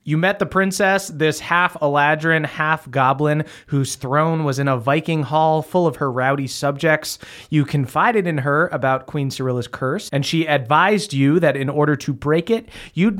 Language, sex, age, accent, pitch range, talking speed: English, male, 30-49, American, 135-165 Hz, 175 wpm